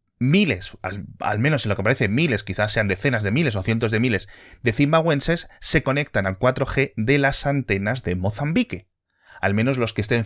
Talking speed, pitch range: 200 wpm, 95-125 Hz